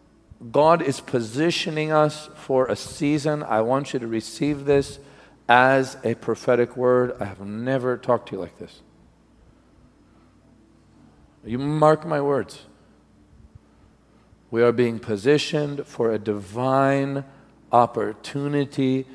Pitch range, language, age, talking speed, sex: 110-150 Hz, English, 50-69, 115 wpm, male